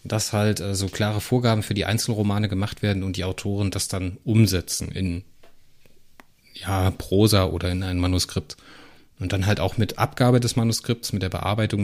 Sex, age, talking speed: male, 30-49, 170 wpm